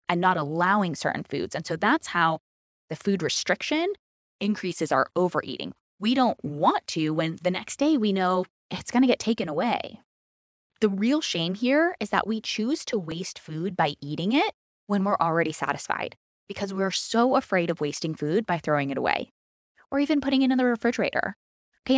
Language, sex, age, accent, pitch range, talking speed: English, female, 20-39, American, 170-255 Hz, 185 wpm